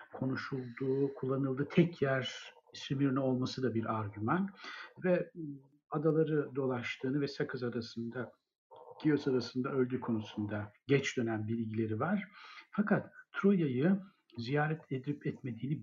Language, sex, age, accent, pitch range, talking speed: Turkish, male, 60-79, native, 115-145 Hz, 105 wpm